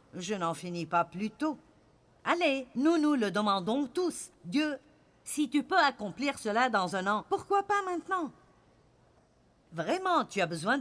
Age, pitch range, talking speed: 50-69, 205-305 Hz, 155 wpm